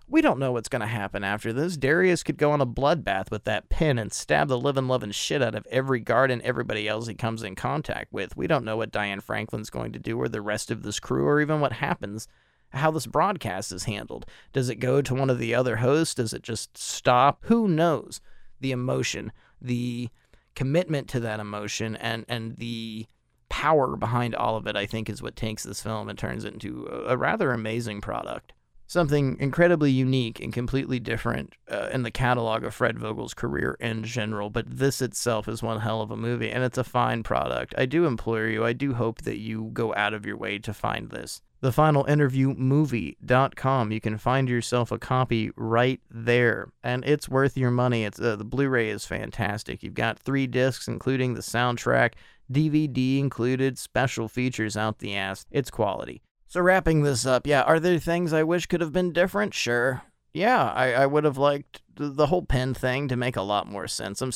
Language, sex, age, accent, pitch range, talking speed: English, male, 30-49, American, 110-135 Hz, 210 wpm